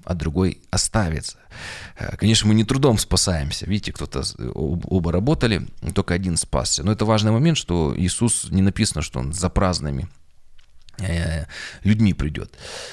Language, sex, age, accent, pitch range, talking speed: Russian, male, 20-39, native, 90-110 Hz, 135 wpm